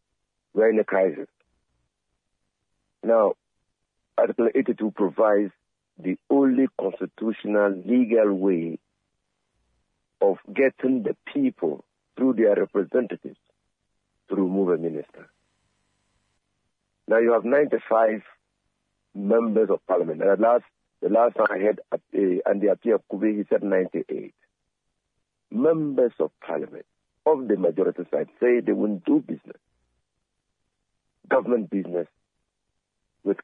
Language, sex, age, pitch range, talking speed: English, male, 60-79, 95-125 Hz, 115 wpm